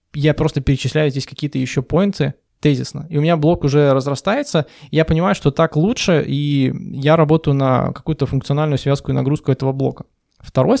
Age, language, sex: 20-39, Russian, male